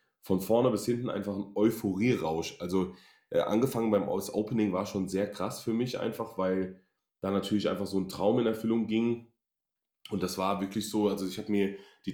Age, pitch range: 20-39, 95-115 Hz